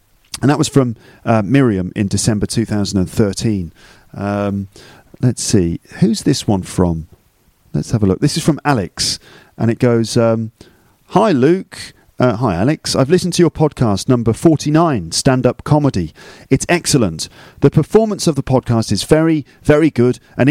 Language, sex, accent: English, male, British